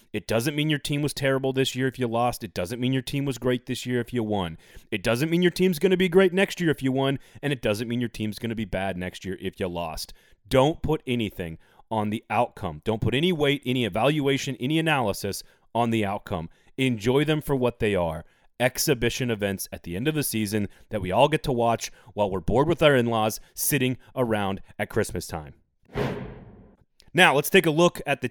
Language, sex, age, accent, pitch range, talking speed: English, male, 30-49, American, 105-135 Hz, 230 wpm